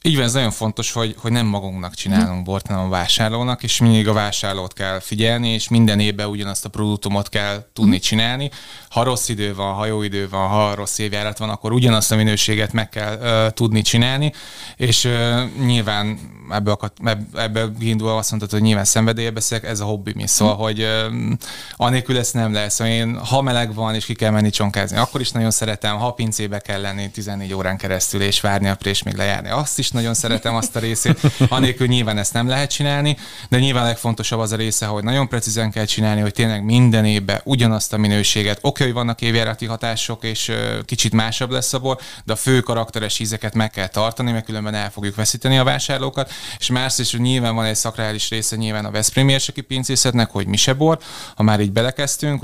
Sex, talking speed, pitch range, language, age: male, 200 wpm, 105-120 Hz, Hungarian, 20-39